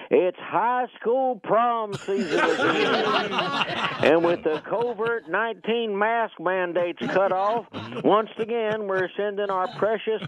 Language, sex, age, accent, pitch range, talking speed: English, male, 50-69, American, 205-255 Hz, 125 wpm